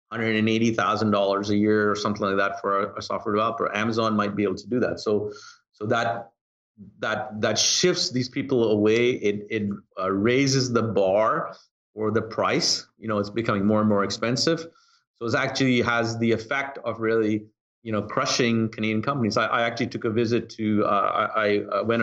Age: 40-59